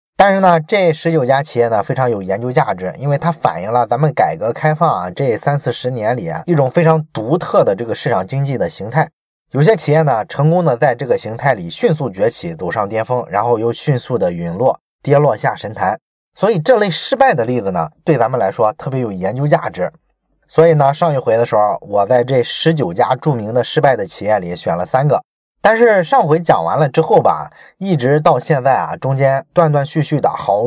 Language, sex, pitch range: Chinese, male, 120-160 Hz